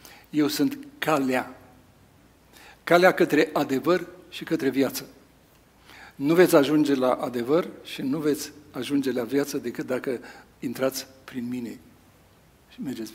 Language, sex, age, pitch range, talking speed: Romanian, male, 60-79, 130-155 Hz, 125 wpm